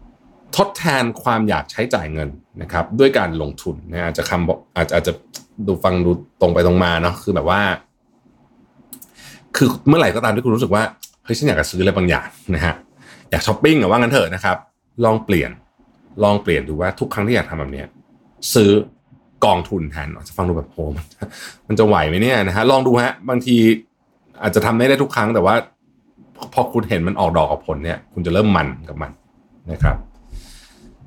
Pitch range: 85-115 Hz